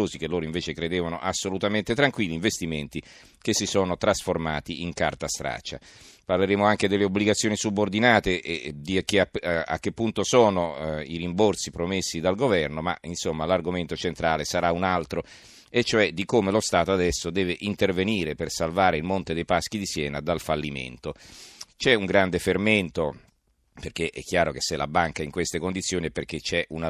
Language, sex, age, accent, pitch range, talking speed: Italian, male, 40-59, native, 80-100 Hz, 165 wpm